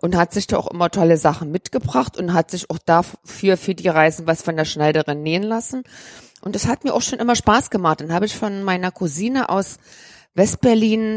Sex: female